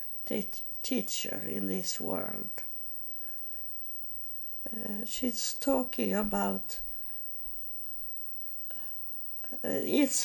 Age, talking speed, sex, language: 60-79, 60 wpm, female, English